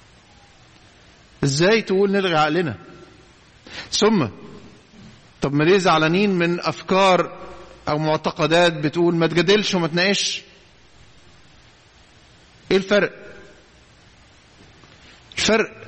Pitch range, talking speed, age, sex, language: 145-205 Hz, 80 wpm, 50-69, male, English